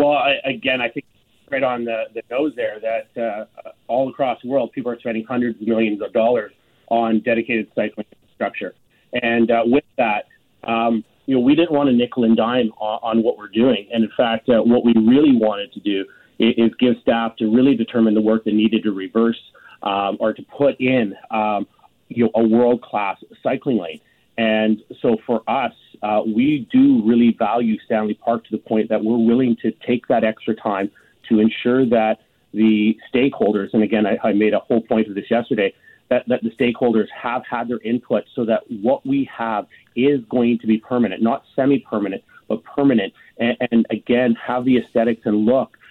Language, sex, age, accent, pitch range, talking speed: English, male, 30-49, American, 110-125 Hz, 195 wpm